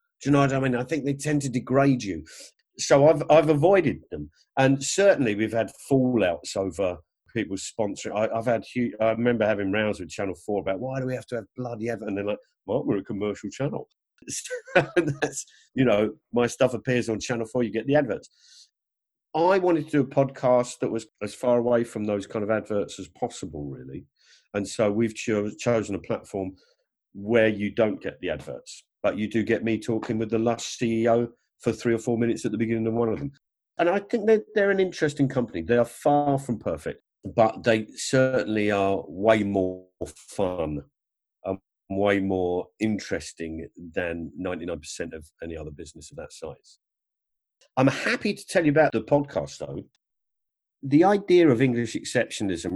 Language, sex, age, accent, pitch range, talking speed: English, male, 50-69, British, 105-135 Hz, 185 wpm